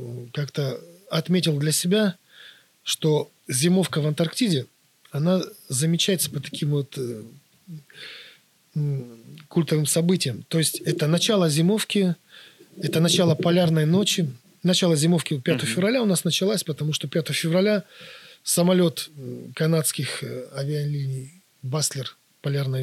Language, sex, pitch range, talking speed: Russian, male, 145-180 Hz, 105 wpm